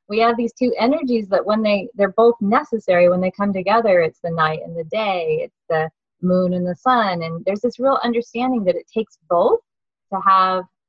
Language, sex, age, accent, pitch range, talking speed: English, female, 30-49, American, 180-245 Hz, 210 wpm